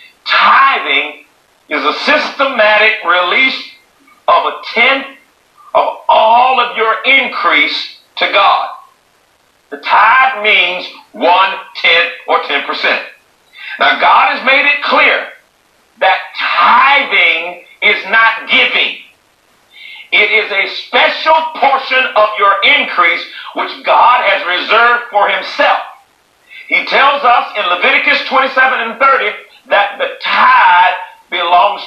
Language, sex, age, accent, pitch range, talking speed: English, male, 50-69, American, 200-275 Hz, 110 wpm